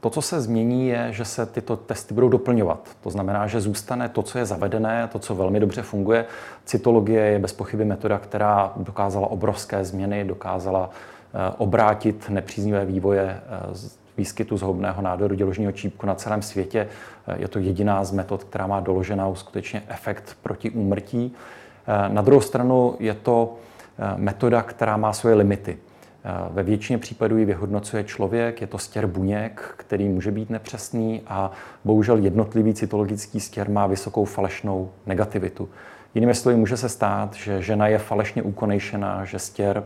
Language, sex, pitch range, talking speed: Czech, male, 100-115 Hz, 155 wpm